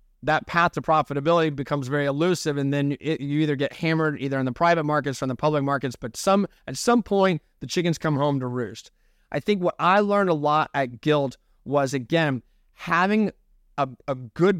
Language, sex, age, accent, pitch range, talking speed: English, male, 30-49, American, 140-175 Hz, 200 wpm